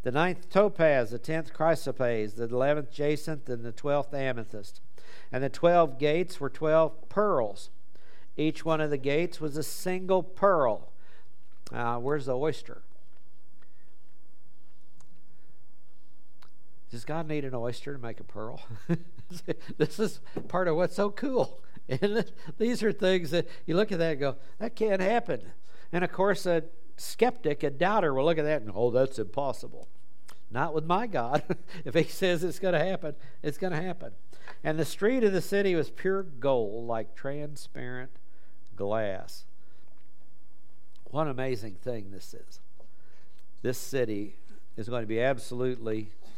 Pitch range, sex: 120-170 Hz, male